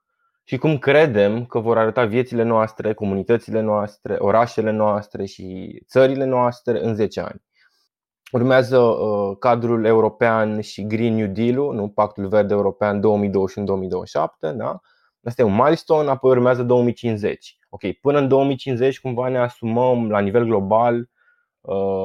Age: 20-39